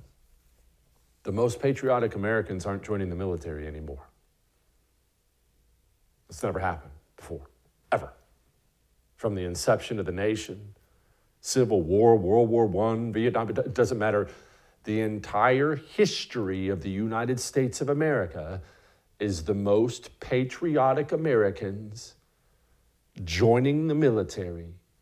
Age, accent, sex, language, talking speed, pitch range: 50-69, American, male, English, 110 wpm, 85-115 Hz